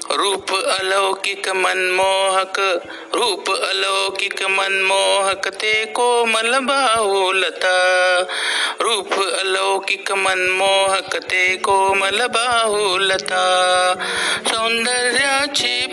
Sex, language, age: male, Marathi, 50-69